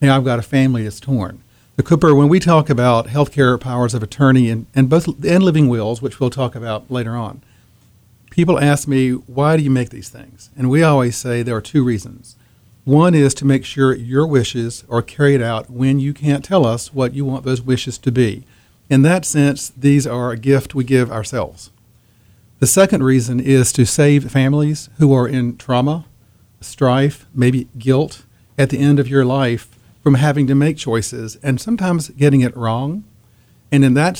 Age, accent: 40-59, American